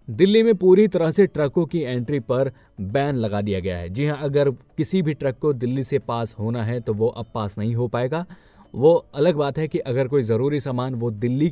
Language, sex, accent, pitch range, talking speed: Hindi, male, native, 110-145 Hz, 230 wpm